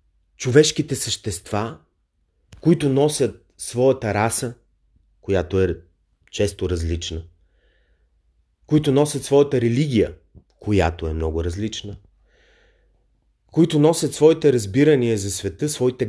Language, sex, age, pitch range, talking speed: Bulgarian, male, 30-49, 95-150 Hz, 95 wpm